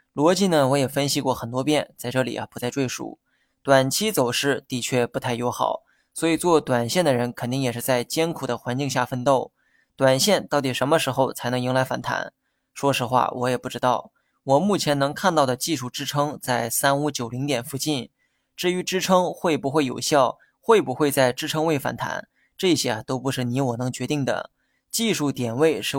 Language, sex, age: Chinese, male, 20-39